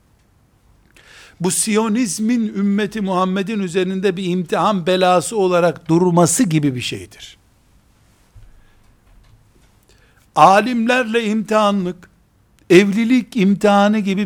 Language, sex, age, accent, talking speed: Turkish, male, 60-79, native, 75 wpm